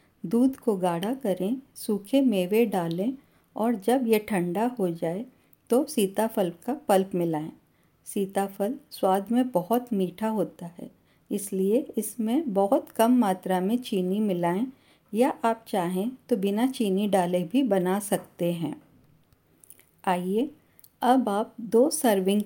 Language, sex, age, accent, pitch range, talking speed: Hindi, female, 50-69, native, 185-240 Hz, 130 wpm